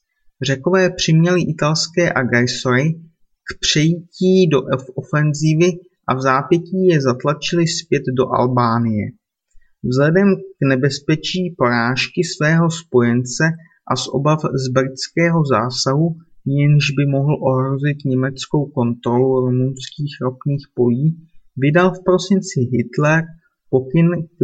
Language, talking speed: Czech, 105 wpm